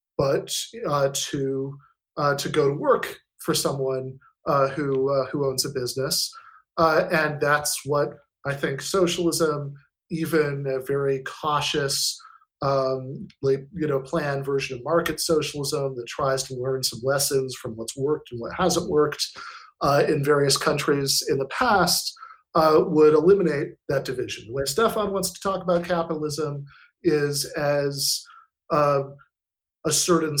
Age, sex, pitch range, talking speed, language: 40-59, male, 140-170 Hz, 145 wpm, English